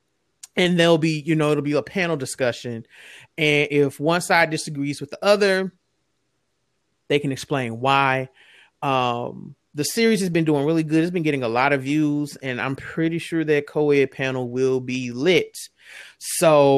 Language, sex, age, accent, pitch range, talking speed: English, male, 30-49, American, 135-165 Hz, 170 wpm